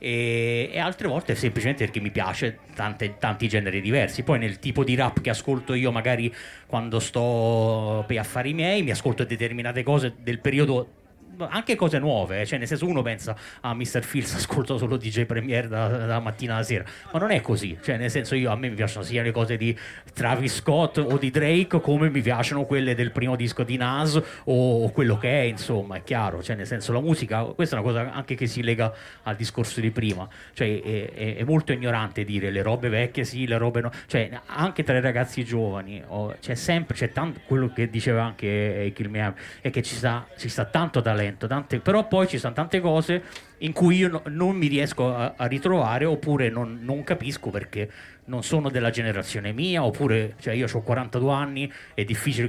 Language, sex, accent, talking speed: Italian, male, native, 205 wpm